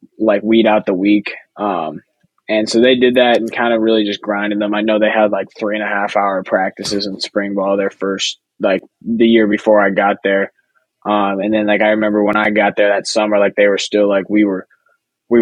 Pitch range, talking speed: 100-115 Hz, 235 wpm